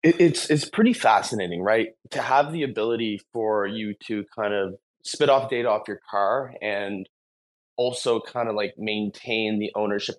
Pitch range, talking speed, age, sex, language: 95-105 Hz, 165 wpm, 20-39, male, English